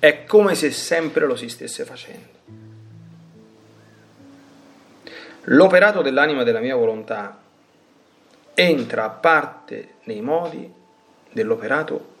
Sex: male